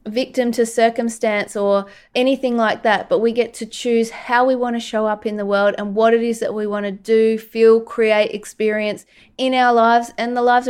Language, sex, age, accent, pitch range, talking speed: English, female, 20-39, Australian, 220-275 Hz, 220 wpm